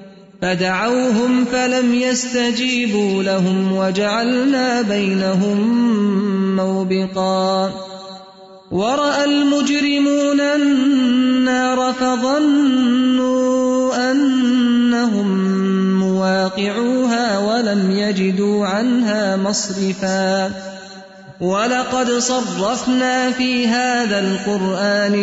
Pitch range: 195-250 Hz